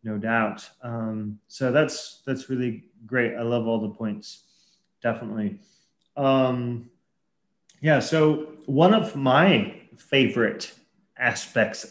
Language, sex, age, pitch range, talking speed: English, male, 30-49, 120-155 Hz, 110 wpm